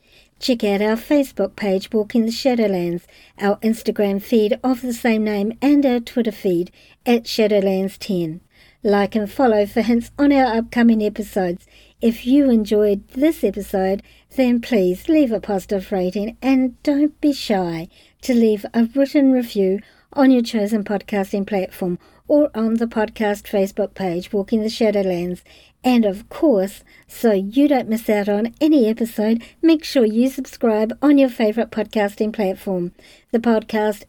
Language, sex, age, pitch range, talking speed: English, male, 50-69, 200-250 Hz, 150 wpm